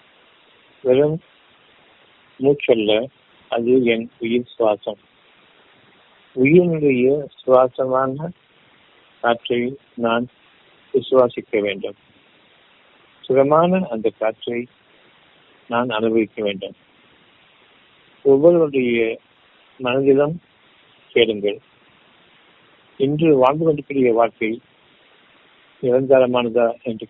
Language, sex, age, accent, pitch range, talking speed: Tamil, male, 50-69, native, 115-135 Hz, 60 wpm